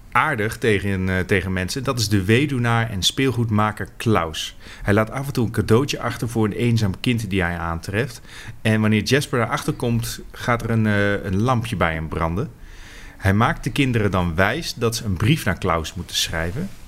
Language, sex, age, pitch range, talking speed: Dutch, male, 30-49, 95-115 Hz, 195 wpm